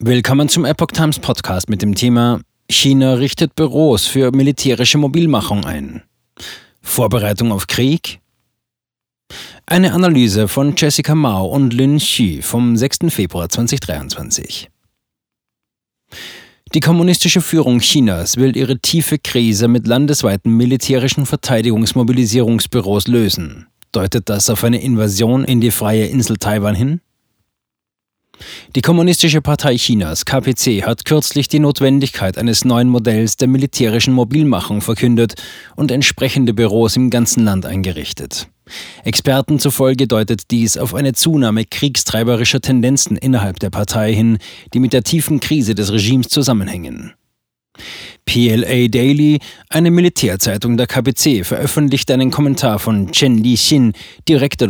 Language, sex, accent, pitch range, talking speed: German, male, German, 110-140 Hz, 125 wpm